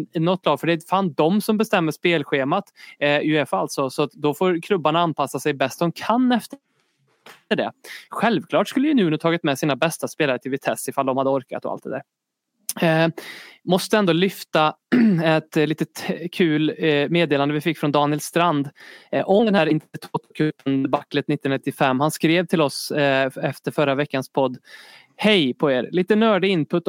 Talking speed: 165 wpm